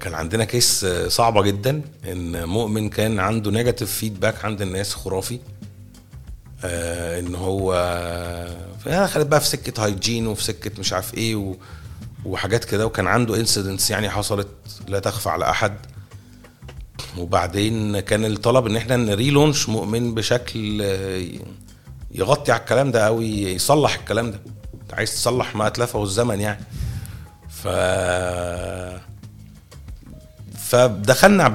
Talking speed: 120 wpm